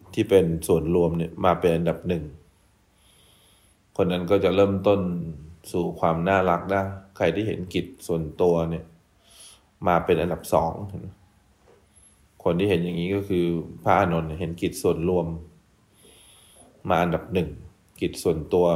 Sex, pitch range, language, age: male, 85-100 Hz, English, 20-39